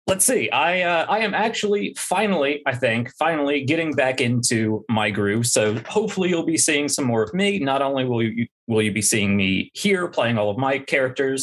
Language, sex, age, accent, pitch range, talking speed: English, male, 30-49, American, 110-140 Hz, 210 wpm